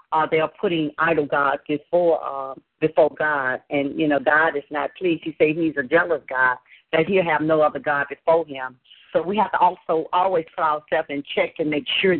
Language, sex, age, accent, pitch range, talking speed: English, female, 50-69, American, 145-170 Hz, 215 wpm